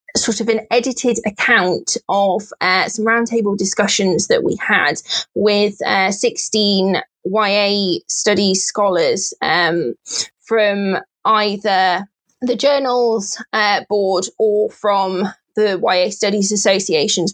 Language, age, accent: English, 20-39, British